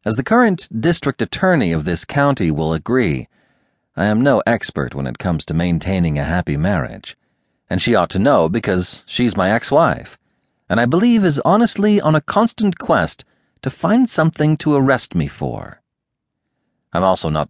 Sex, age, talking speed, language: male, 40-59, 170 wpm, English